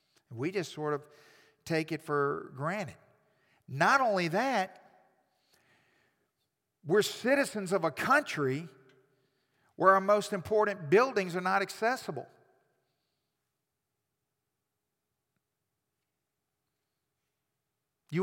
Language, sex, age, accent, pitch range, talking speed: English, male, 50-69, American, 140-225 Hz, 80 wpm